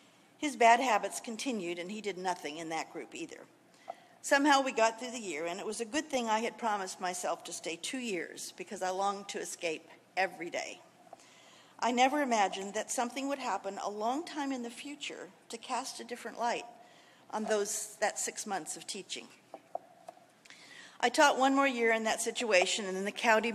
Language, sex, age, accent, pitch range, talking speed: English, female, 50-69, American, 195-245 Hz, 195 wpm